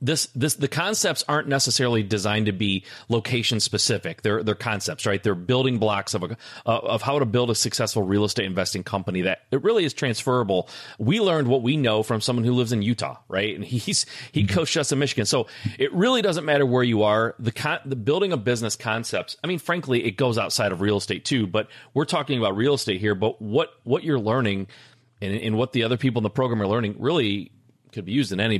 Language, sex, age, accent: English, male, 30-49, American